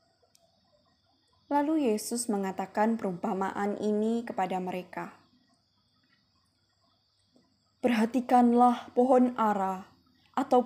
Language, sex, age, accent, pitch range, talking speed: Indonesian, female, 20-39, native, 190-240 Hz, 60 wpm